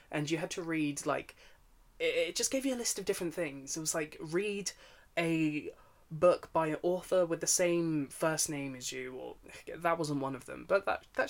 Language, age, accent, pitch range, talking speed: English, 20-39, British, 140-175 Hz, 220 wpm